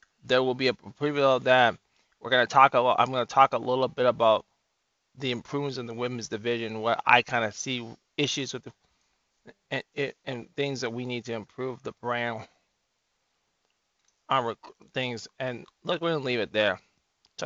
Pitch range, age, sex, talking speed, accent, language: 120-140 Hz, 20-39, male, 185 wpm, American, English